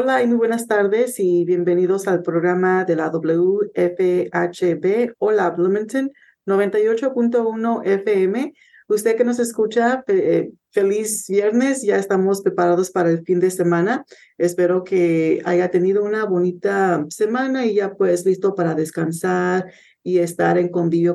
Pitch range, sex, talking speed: 175-215 Hz, female, 135 wpm